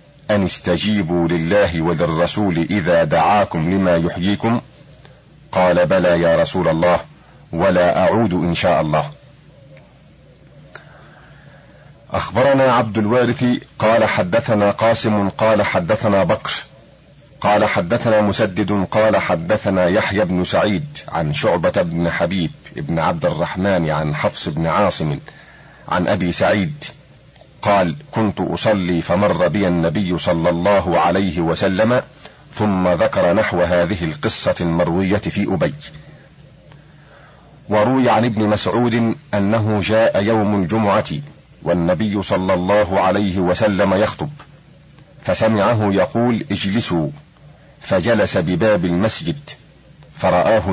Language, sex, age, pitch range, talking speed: Arabic, male, 50-69, 90-115 Hz, 105 wpm